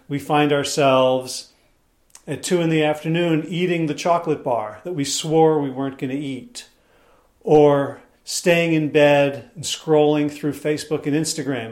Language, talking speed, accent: English, 155 wpm, American